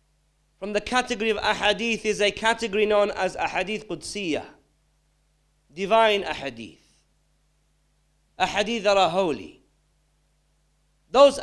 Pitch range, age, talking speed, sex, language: 185-225 Hz, 40-59, 100 wpm, male, English